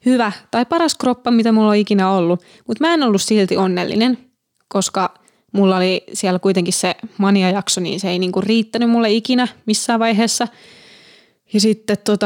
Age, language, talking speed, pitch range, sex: 20-39, Finnish, 155 wpm, 185-220 Hz, female